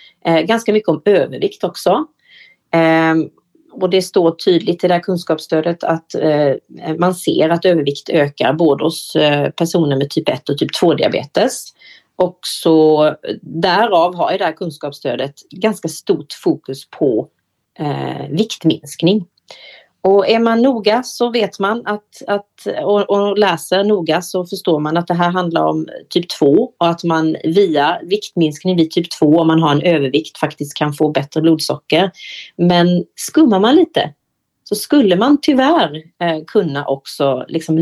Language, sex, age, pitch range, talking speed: Swedish, female, 30-49, 155-205 Hz, 150 wpm